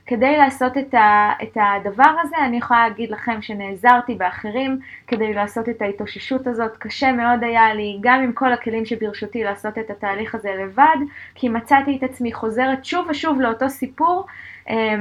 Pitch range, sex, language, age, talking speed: 205-260 Hz, female, Hebrew, 20-39, 155 wpm